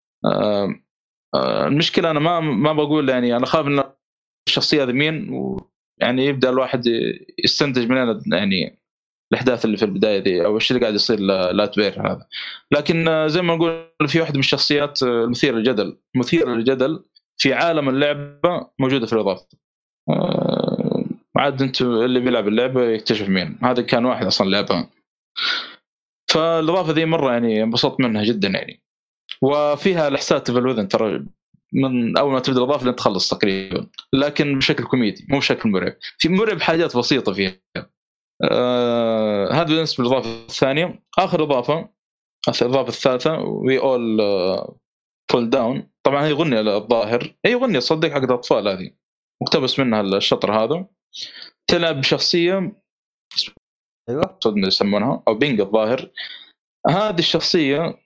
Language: Arabic